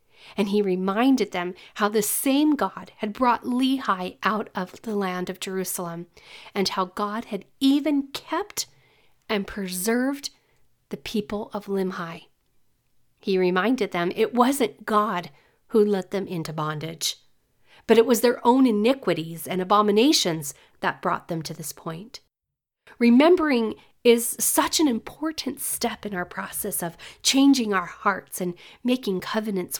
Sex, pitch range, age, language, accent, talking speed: female, 180-240 Hz, 40-59, English, American, 140 wpm